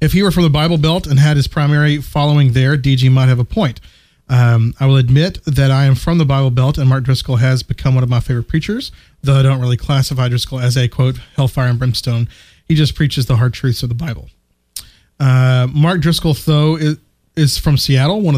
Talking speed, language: 225 wpm, English